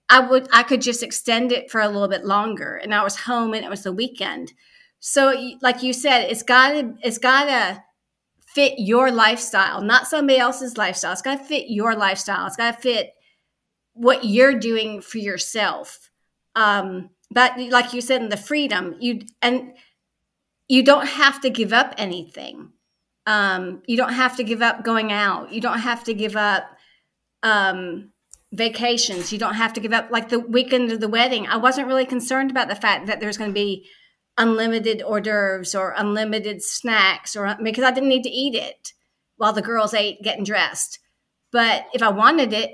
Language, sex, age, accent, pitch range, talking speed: English, female, 40-59, American, 215-260 Hz, 185 wpm